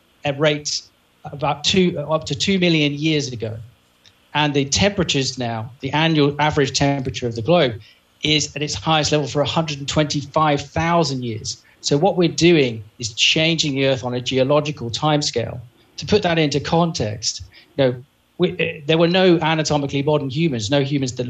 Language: English